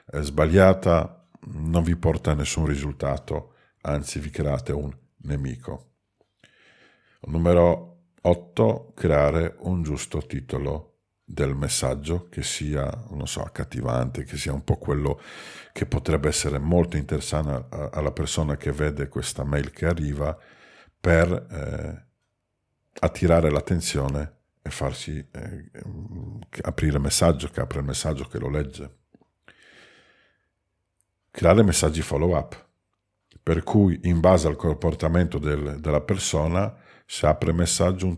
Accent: native